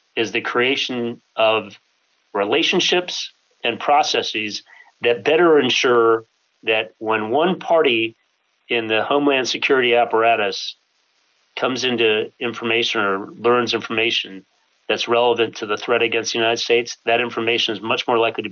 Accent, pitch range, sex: American, 110-120 Hz, male